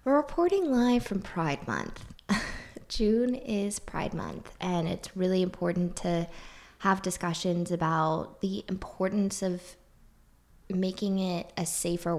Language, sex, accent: English, female, American